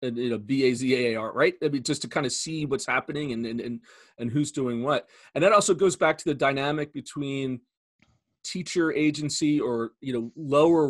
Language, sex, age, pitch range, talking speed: English, male, 40-59, 115-150 Hz, 200 wpm